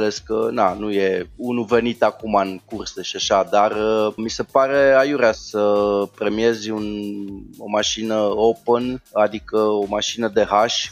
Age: 20-39